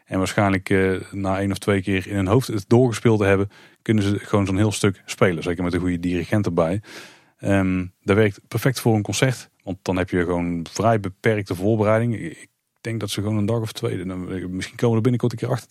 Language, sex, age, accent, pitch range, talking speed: Dutch, male, 30-49, Dutch, 95-115 Hz, 230 wpm